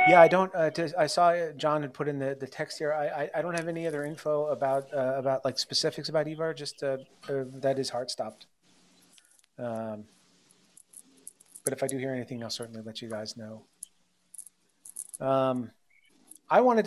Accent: American